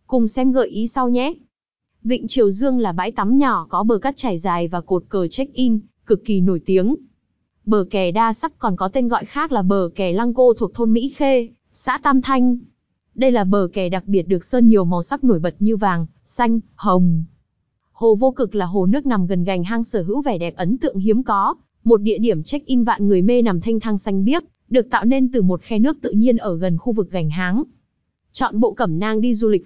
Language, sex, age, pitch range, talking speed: Vietnamese, female, 20-39, 195-250 Hz, 235 wpm